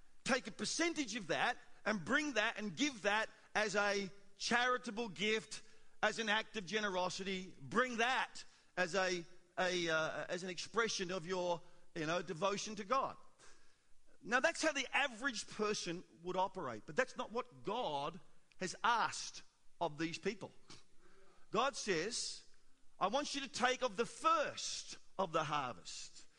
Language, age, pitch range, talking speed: English, 40-59, 210-280 Hz, 150 wpm